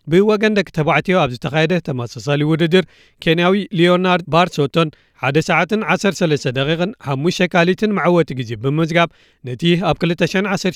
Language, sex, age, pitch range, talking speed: Amharic, male, 40-59, 145-185 Hz, 125 wpm